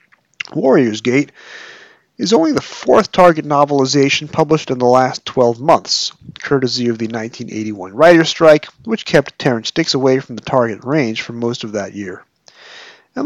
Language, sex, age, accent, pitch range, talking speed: English, male, 40-59, American, 115-155 Hz, 160 wpm